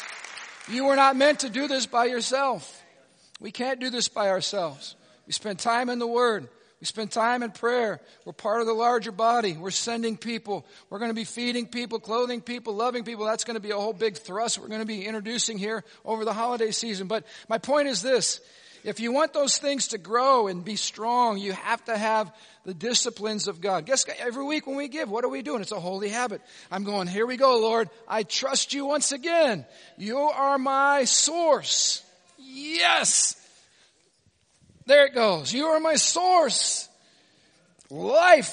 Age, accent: 50-69, American